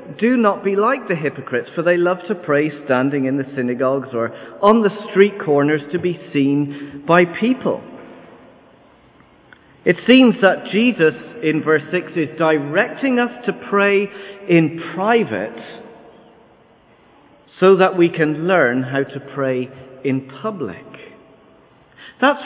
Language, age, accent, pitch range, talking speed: English, 50-69, British, 150-220 Hz, 135 wpm